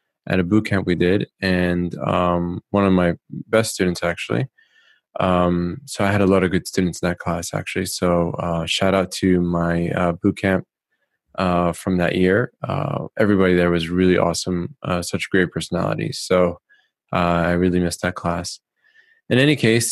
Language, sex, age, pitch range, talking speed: English, male, 20-39, 90-110 Hz, 180 wpm